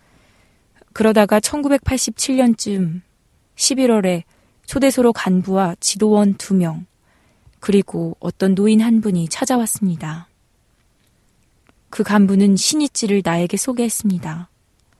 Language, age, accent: Korean, 20-39, native